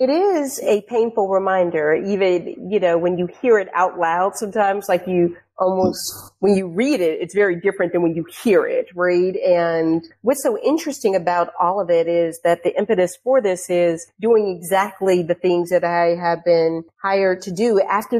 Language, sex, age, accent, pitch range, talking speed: English, female, 40-59, American, 175-205 Hz, 190 wpm